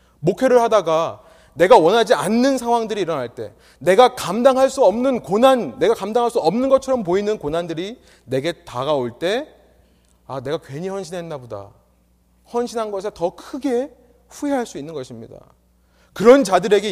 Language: Korean